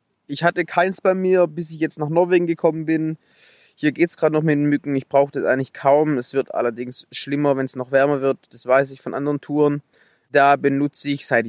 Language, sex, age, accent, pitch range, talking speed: German, male, 20-39, German, 125-155 Hz, 230 wpm